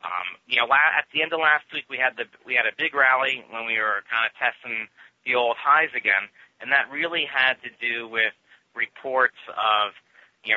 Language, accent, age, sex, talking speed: English, American, 30-49, male, 210 wpm